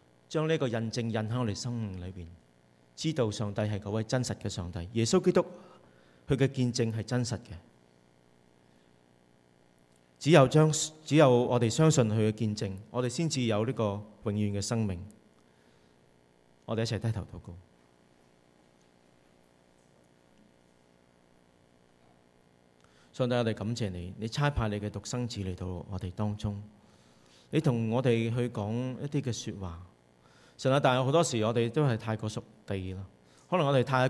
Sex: male